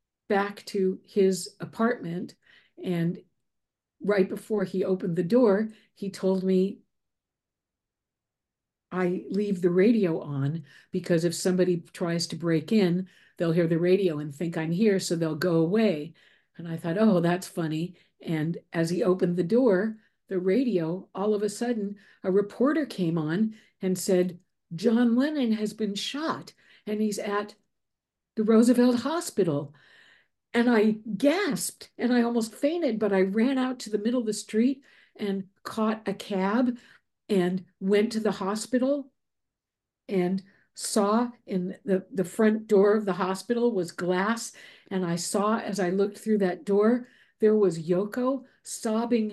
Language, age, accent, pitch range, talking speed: English, 50-69, American, 180-220 Hz, 150 wpm